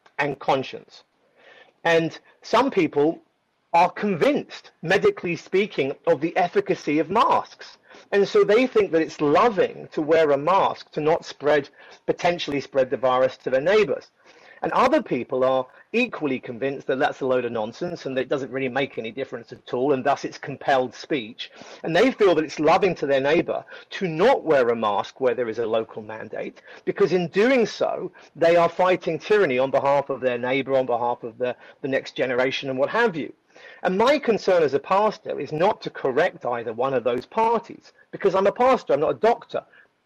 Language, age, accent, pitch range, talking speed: English, 40-59, British, 145-230 Hz, 195 wpm